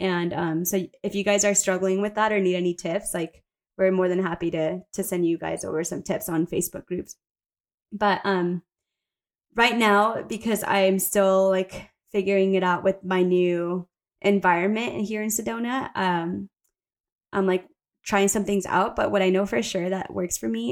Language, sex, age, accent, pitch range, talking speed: English, female, 20-39, American, 180-200 Hz, 190 wpm